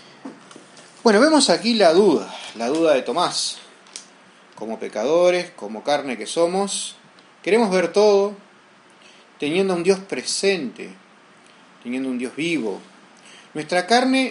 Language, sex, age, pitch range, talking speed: Spanish, male, 30-49, 150-215 Hz, 115 wpm